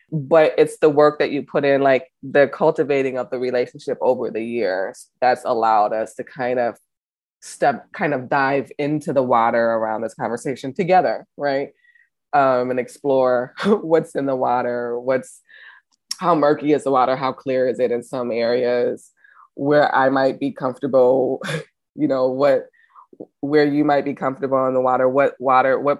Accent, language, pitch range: American, English, 130-150 Hz